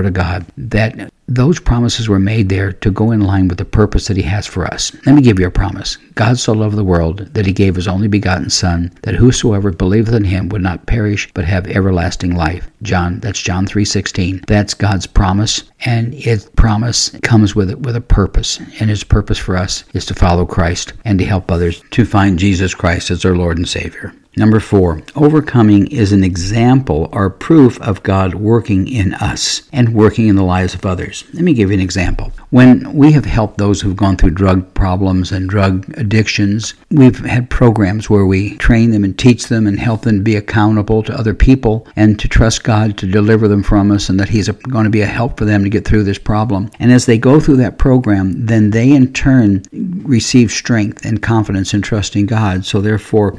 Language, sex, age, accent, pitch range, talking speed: English, male, 60-79, American, 95-115 Hz, 210 wpm